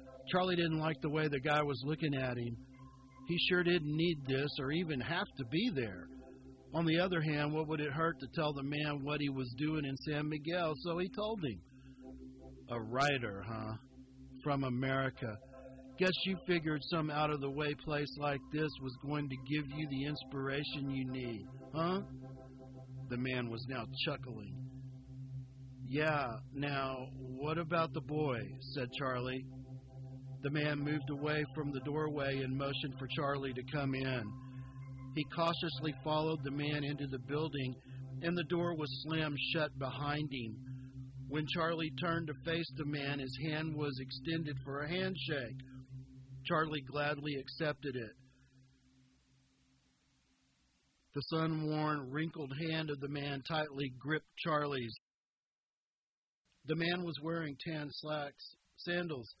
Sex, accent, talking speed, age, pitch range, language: male, American, 145 wpm, 50-69, 130-155 Hz, English